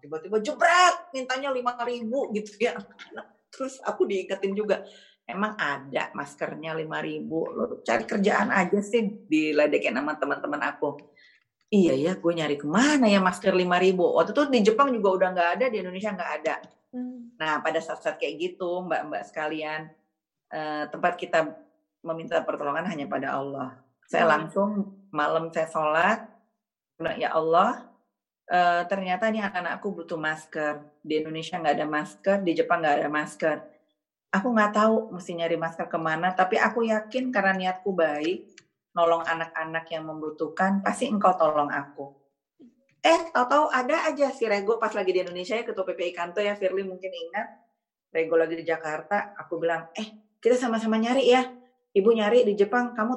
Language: Indonesian